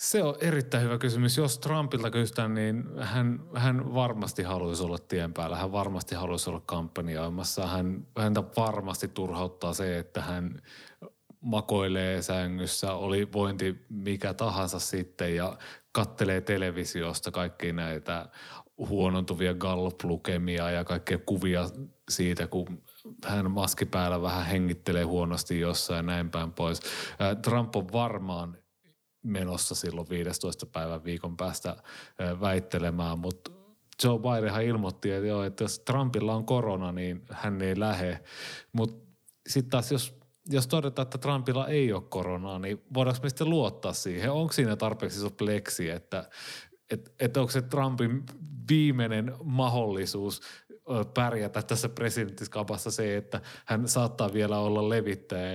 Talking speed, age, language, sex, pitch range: 130 wpm, 30-49, Finnish, male, 90-120 Hz